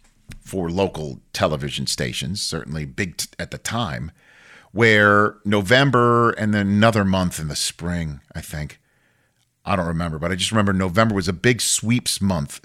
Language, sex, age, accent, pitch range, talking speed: English, male, 40-59, American, 90-115 Hz, 160 wpm